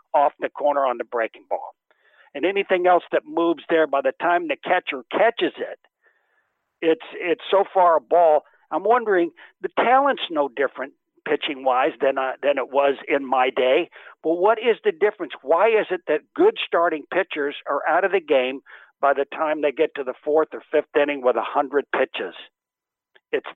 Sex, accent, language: male, American, English